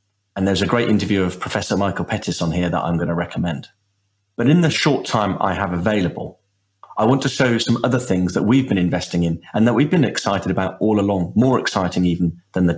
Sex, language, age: male, English, 40-59